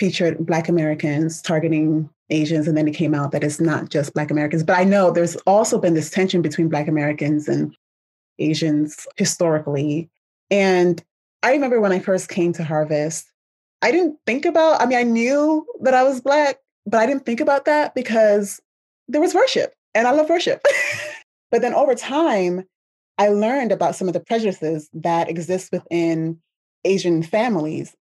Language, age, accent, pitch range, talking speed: English, 20-39, American, 160-225 Hz, 175 wpm